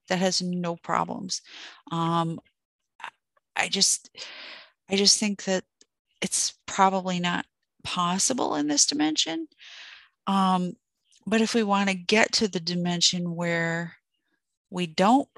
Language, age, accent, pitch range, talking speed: English, 40-59, American, 155-185 Hz, 120 wpm